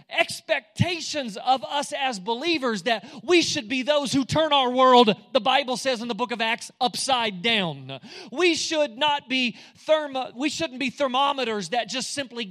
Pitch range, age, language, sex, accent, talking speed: 230-295 Hz, 30-49, English, male, American, 175 wpm